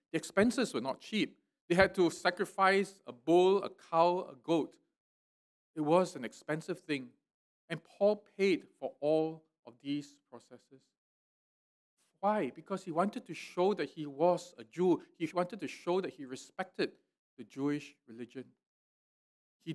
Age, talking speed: 50-69, 150 wpm